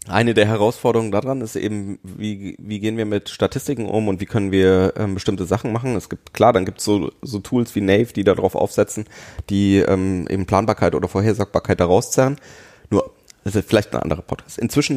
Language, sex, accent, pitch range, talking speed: German, male, German, 95-120 Hz, 205 wpm